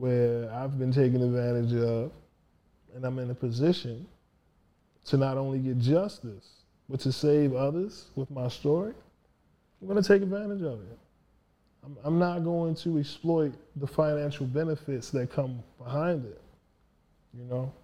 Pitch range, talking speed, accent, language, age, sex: 125-155 Hz, 150 wpm, American, English, 20-39, male